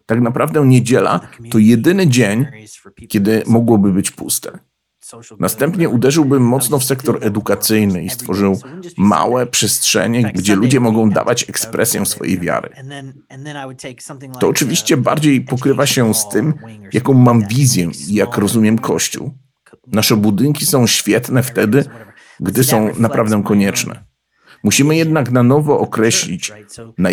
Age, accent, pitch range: 50-69, native, 105-135 Hz